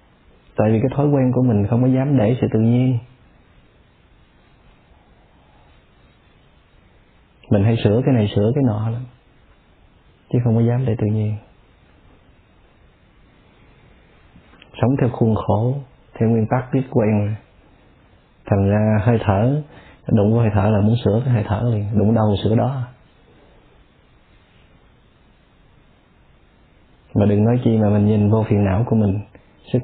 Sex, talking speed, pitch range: male, 145 wpm, 105-125 Hz